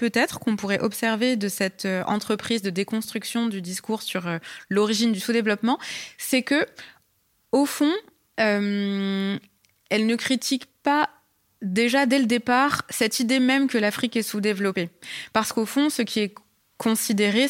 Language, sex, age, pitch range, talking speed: French, female, 20-39, 185-230 Hz, 145 wpm